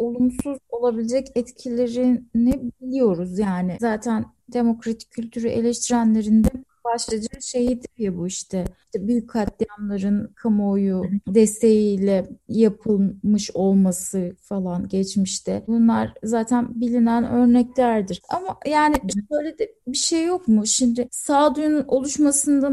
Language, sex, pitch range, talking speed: Turkish, female, 225-275 Hz, 105 wpm